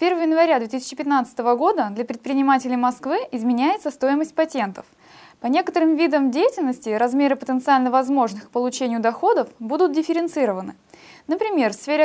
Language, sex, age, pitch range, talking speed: Russian, female, 20-39, 235-310 Hz, 125 wpm